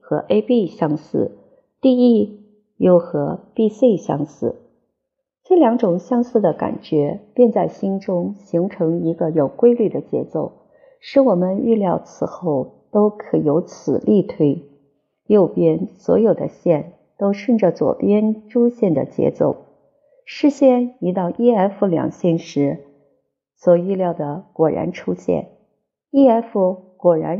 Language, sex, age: Chinese, female, 50-69